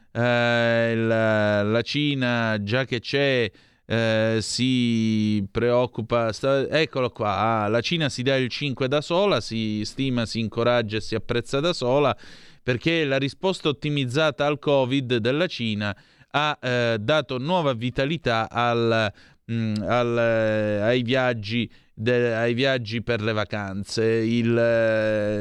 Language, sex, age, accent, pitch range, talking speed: Italian, male, 30-49, native, 110-135 Hz, 130 wpm